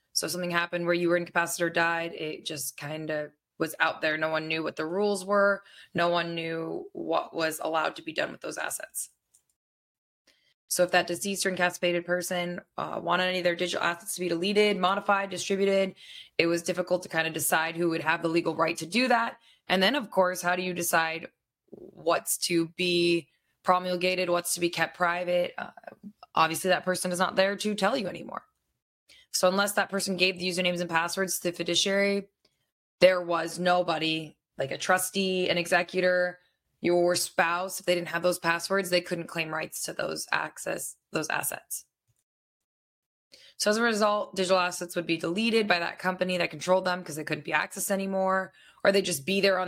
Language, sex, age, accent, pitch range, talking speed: English, female, 20-39, American, 170-190 Hz, 195 wpm